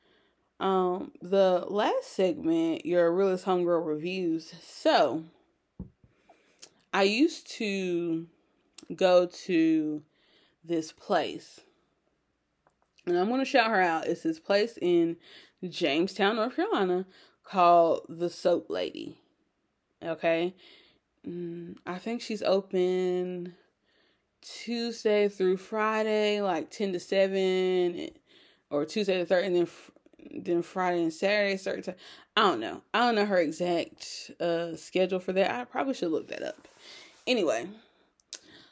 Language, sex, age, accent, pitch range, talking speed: English, female, 20-39, American, 175-220 Hz, 120 wpm